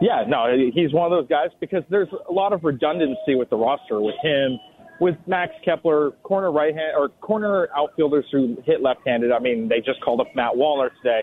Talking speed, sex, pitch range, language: 205 wpm, male, 135-180 Hz, English